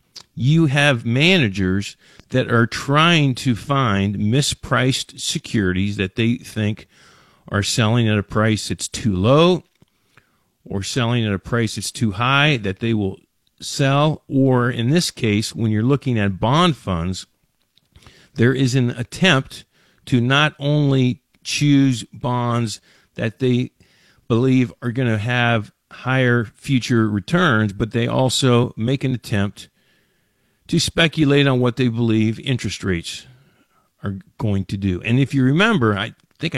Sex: male